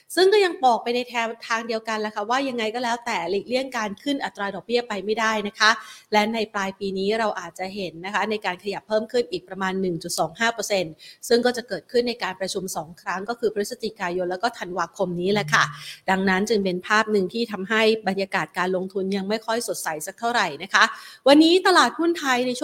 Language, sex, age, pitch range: Thai, female, 30-49, 190-235 Hz